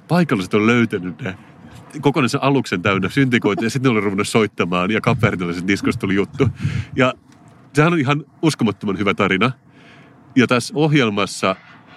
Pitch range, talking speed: 100-135 Hz, 140 wpm